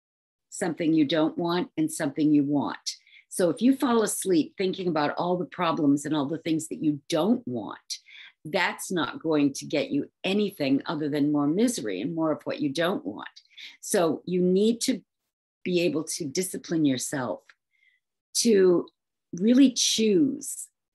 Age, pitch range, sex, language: 50-69, 155-230 Hz, female, English